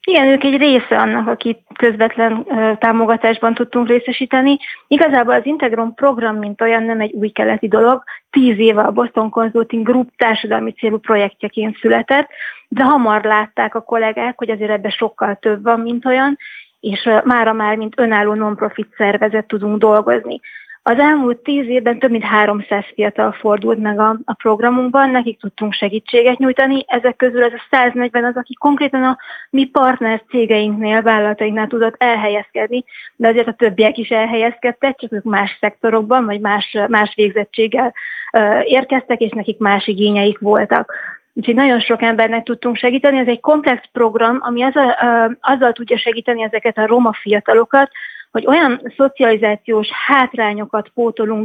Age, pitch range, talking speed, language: 30-49, 220-250 Hz, 150 wpm, Hungarian